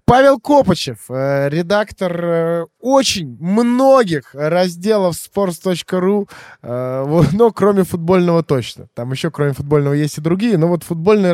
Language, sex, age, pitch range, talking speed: Russian, male, 20-39, 135-185 Hz, 110 wpm